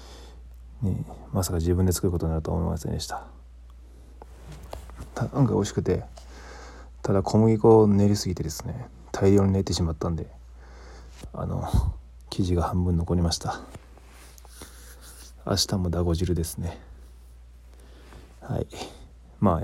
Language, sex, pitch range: Japanese, male, 65-95 Hz